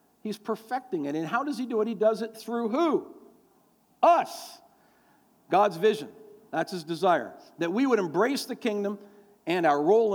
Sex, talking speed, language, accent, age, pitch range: male, 170 wpm, English, American, 50-69, 170-245 Hz